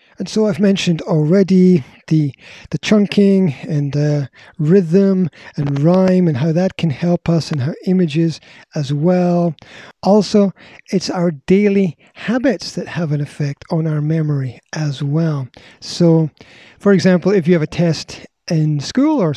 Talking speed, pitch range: 150 wpm, 150-195 Hz